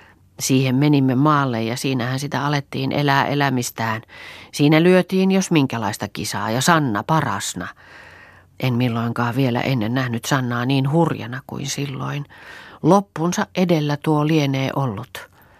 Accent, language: native, Finnish